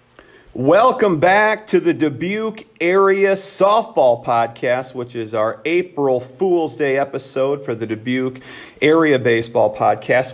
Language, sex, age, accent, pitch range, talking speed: English, male, 40-59, American, 125-175 Hz, 120 wpm